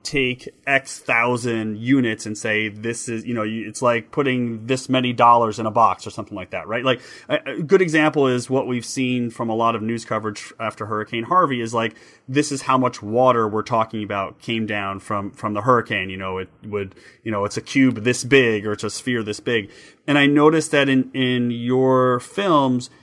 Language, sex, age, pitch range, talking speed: English, male, 30-49, 115-140 Hz, 215 wpm